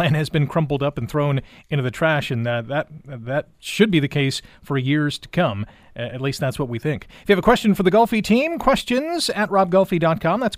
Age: 40-59